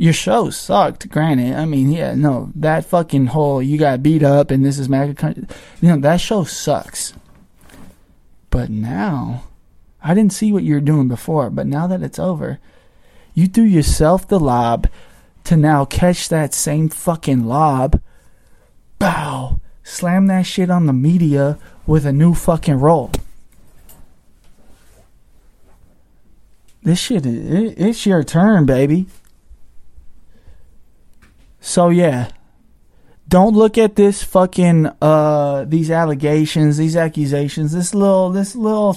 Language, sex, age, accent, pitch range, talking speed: English, male, 20-39, American, 140-180 Hz, 130 wpm